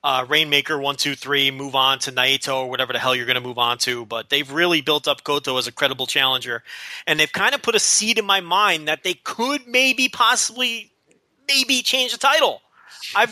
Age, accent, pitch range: 30-49, American, 150-210 Hz